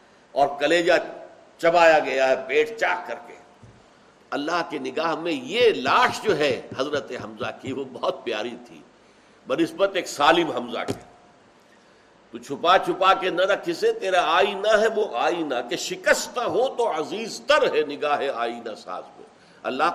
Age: 60-79